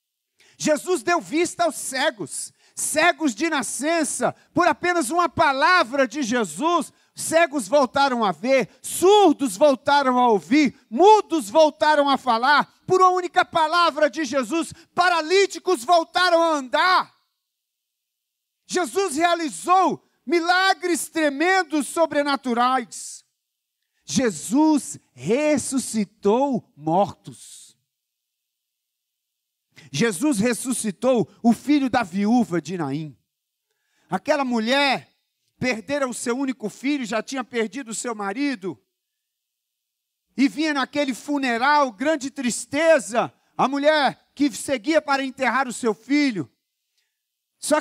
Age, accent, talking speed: 40-59, Brazilian, 100 wpm